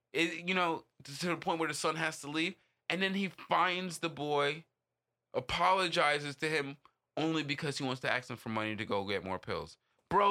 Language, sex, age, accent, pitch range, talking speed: English, male, 20-39, American, 110-145 Hz, 210 wpm